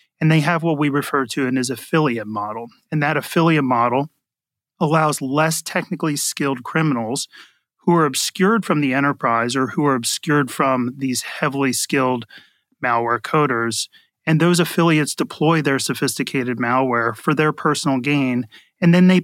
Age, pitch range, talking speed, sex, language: 30-49, 125-155 Hz, 160 wpm, male, English